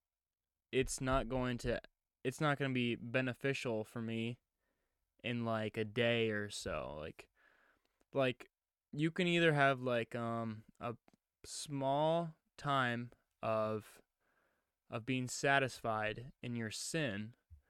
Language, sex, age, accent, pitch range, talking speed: English, male, 20-39, American, 115-135 Hz, 120 wpm